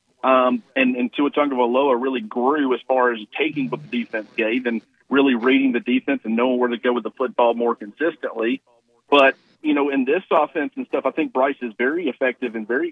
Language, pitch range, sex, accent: English, 120-140 Hz, male, American